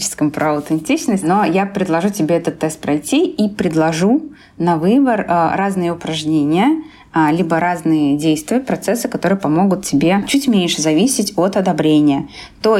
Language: Russian